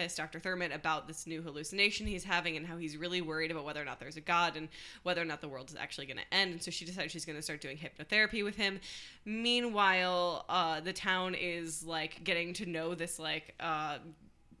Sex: female